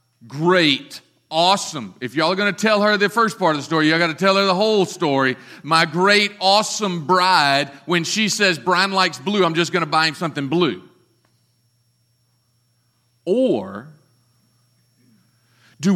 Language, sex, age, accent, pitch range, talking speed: English, male, 40-59, American, 140-195 Hz, 160 wpm